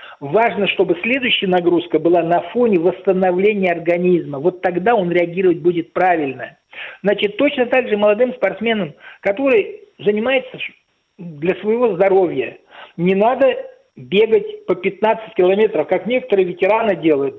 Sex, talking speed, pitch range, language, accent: male, 125 wpm, 185-250 Hz, Russian, native